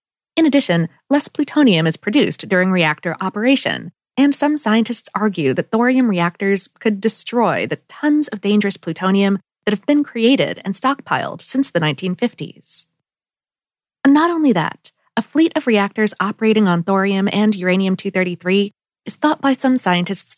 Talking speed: 145 wpm